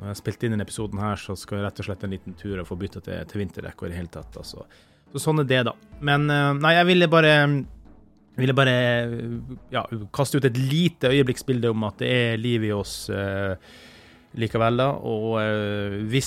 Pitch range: 105-130 Hz